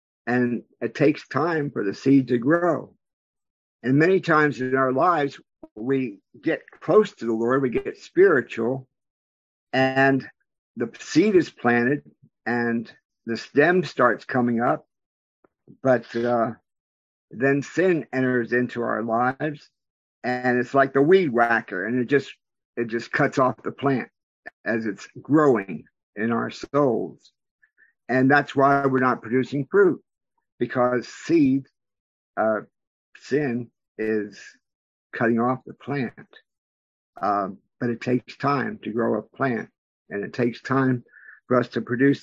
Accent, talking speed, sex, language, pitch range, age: American, 140 wpm, male, English, 115-135 Hz, 50-69